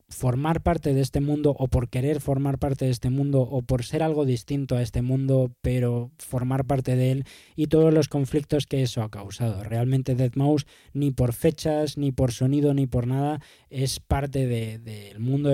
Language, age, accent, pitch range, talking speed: Spanish, 20-39, Spanish, 120-140 Hz, 190 wpm